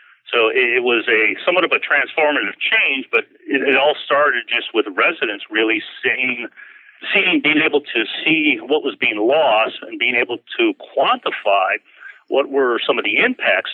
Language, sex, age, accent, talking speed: English, male, 40-59, American, 165 wpm